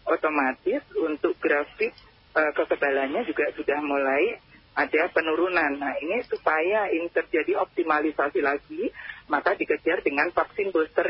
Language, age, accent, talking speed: Indonesian, 40-59, native, 120 wpm